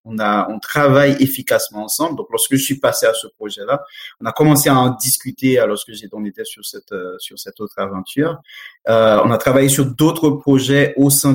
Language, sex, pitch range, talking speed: English, male, 105-135 Hz, 200 wpm